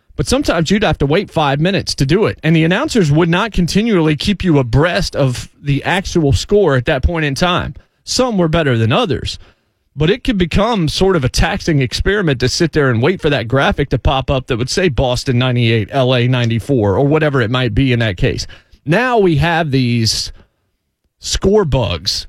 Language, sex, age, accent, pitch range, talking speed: English, male, 30-49, American, 125-170 Hz, 200 wpm